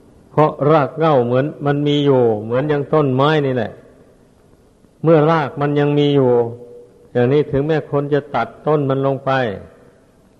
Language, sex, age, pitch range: Thai, male, 60-79, 125-145 Hz